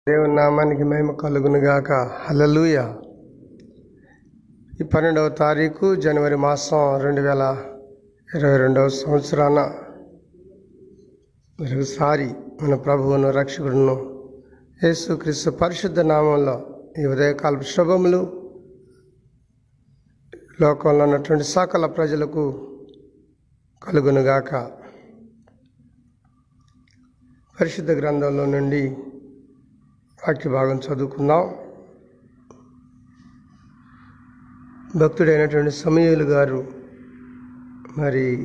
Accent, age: native, 50-69